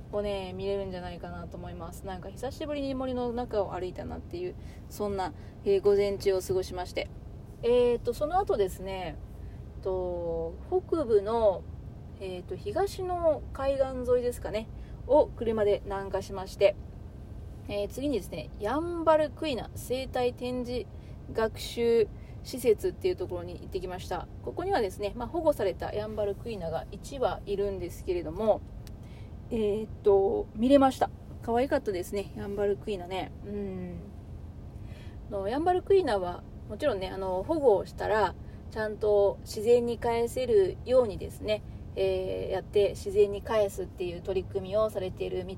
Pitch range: 185-275 Hz